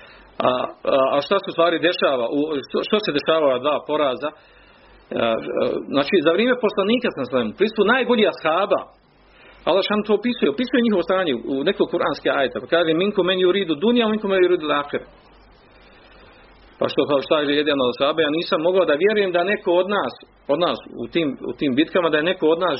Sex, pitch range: male, 145-215 Hz